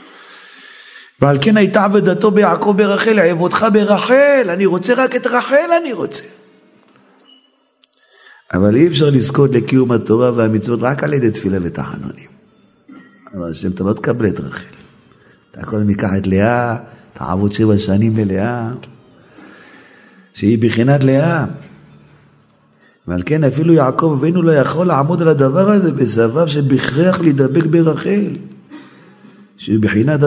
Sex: male